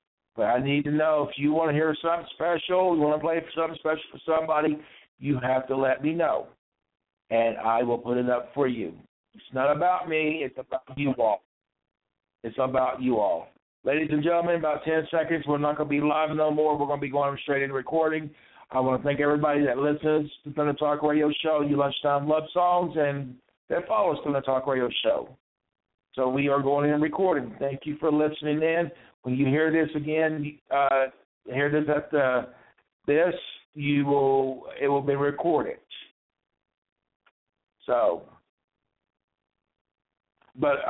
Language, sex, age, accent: English, male, 60-79, American